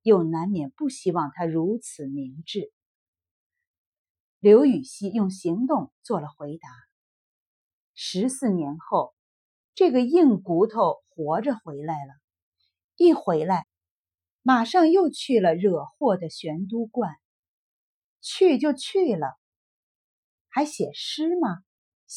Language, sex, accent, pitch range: Chinese, female, native, 155-250 Hz